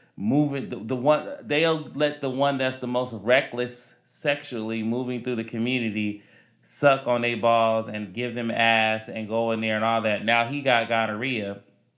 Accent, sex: American, male